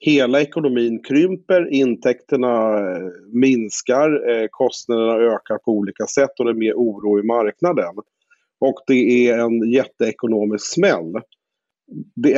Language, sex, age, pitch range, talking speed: Swedish, male, 40-59, 110-155 Hz, 115 wpm